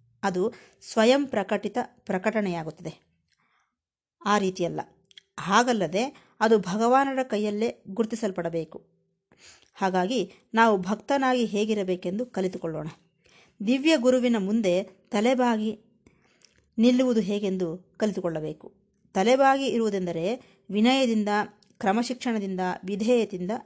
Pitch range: 185-240 Hz